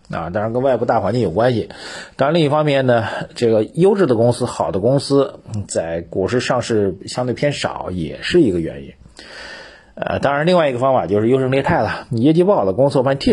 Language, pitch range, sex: Chinese, 95-135 Hz, male